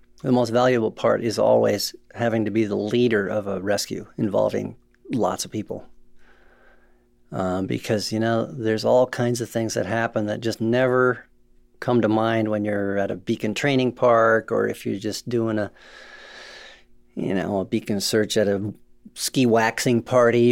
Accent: American